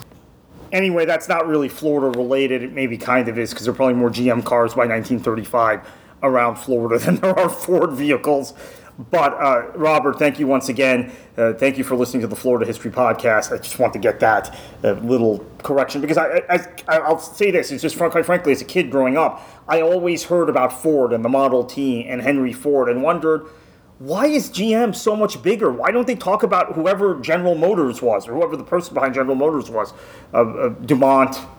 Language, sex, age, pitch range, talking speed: English, male, 30-49, 125-160 Hz, 205 wpm